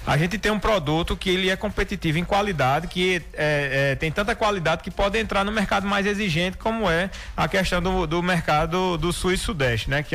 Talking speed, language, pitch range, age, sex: 220 wpm, Portuguese, 140-200 Hz, 20-39, male